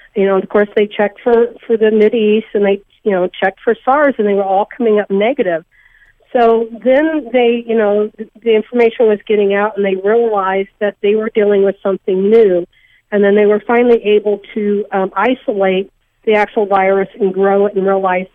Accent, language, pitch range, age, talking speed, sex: American, English, 195-230 Hz, 50-69, 205 wpm, female